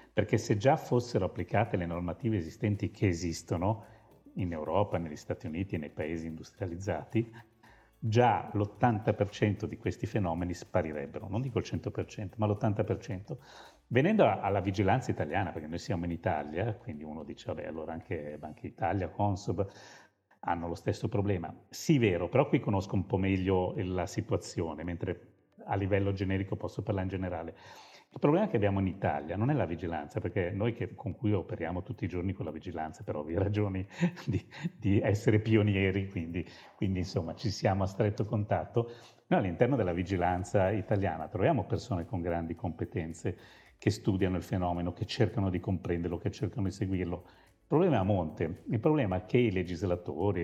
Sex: male